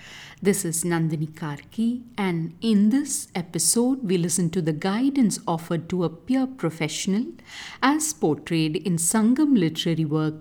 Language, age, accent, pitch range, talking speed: English, 50-69, Indian, 165-230 Hz, 140 wpm